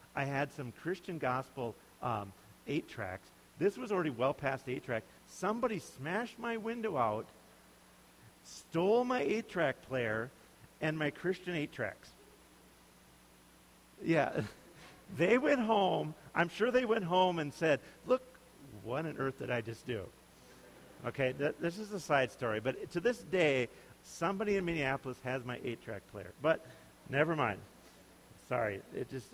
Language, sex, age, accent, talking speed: English, male, 50-69, American, 140 wpm